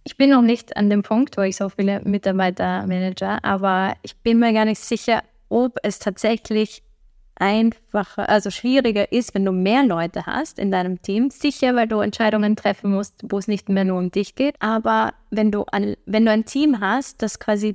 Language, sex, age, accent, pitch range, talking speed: German, female, 20-39, German, 195-220 Hz, 205 wpm